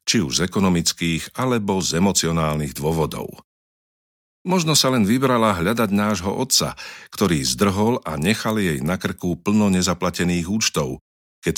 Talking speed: 135 wpm